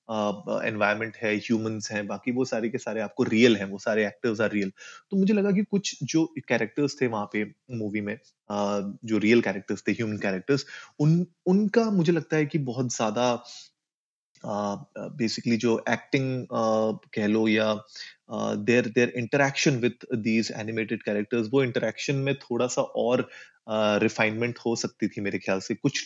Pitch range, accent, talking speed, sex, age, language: 110-140 Hz, native, 165 wpm, male, 30-49, Hindi